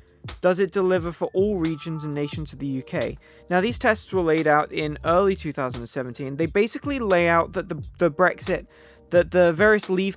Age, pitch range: 20-39, 145-185 Hz